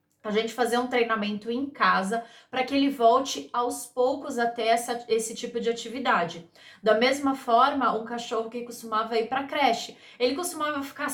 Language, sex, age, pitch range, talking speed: Portuguese, female, 20-39, 225-255 Hz, 190 wpm